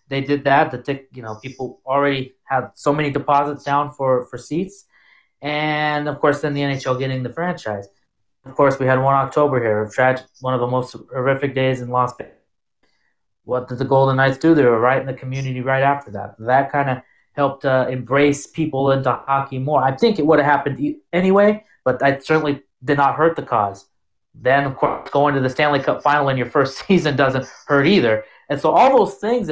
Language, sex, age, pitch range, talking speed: English, male, 30-49, 125-150 Hz, 210 wpm